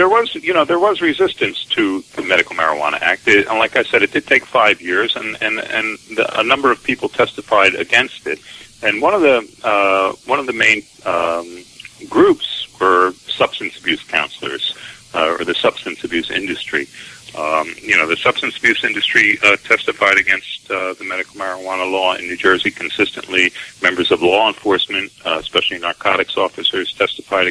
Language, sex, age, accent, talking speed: English, male, 40-59, American, 180 wpm